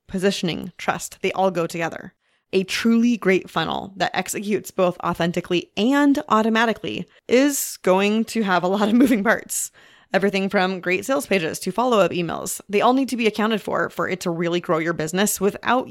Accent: American